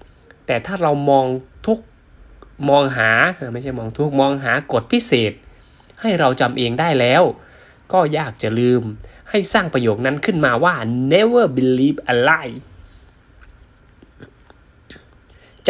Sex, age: male, 20-39